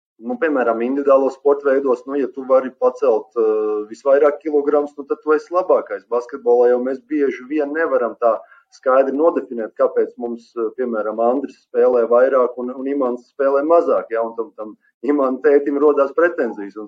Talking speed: 155 wpm